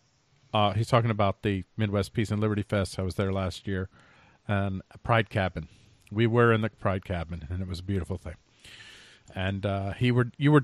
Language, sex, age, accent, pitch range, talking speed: English, male, 40-59, American, 105-150 Hz, 210 wpm